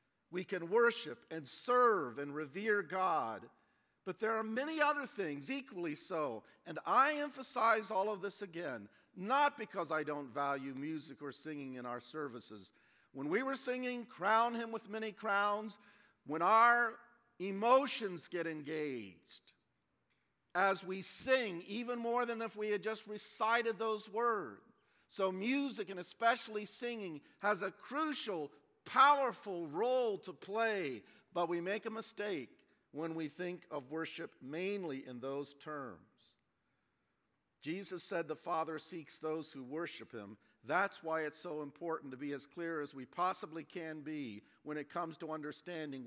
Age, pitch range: 50-69, 155-225 Hz